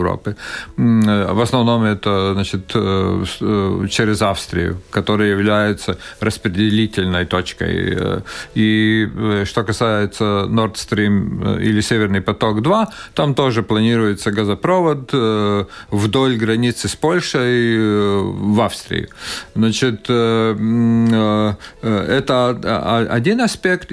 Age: 40-59